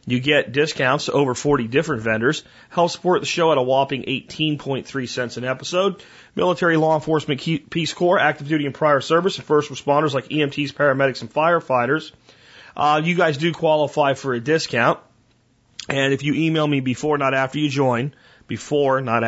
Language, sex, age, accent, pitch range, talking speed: English, male, 40-59, American, 130-160 Hz, 175 wpm